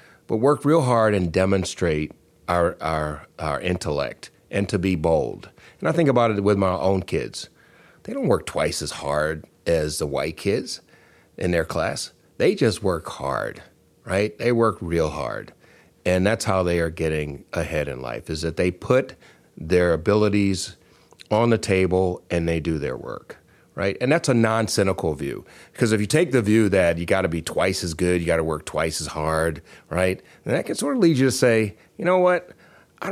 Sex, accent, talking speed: male, American, 200 wpm